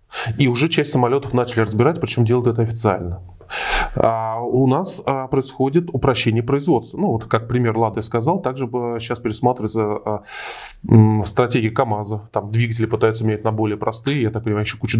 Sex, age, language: male, 20-39, Russian